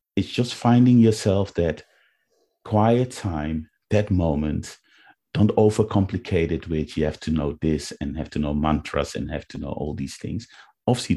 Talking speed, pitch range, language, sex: 165 wpm, 75-105 Hz, English, male